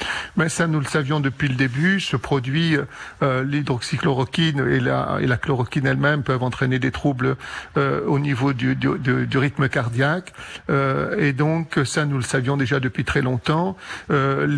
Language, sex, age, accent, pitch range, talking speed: French, male, 50-69, French, 135-155 Hz, 170 wpm